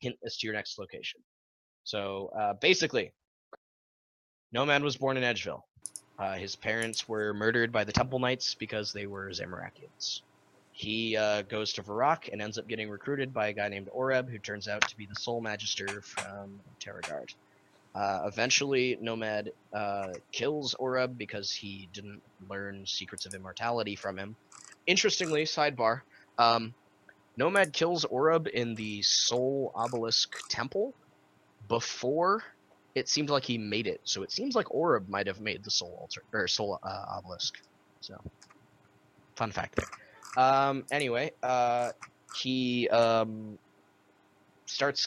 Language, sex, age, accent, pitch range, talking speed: English, male, 20-39, American, 100-125 Hz, 145 wpm